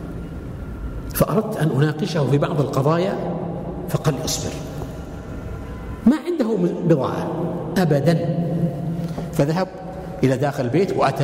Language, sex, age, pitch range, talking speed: Arabic, male, 60-79, 140-195 Hz, 90 wpm